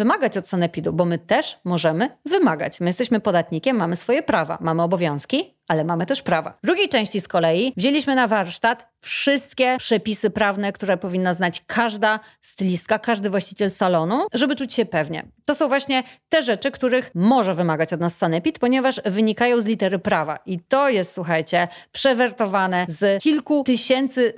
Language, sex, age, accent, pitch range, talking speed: Polish, female, 30-49, native, 180-250 Hz, 165 wpm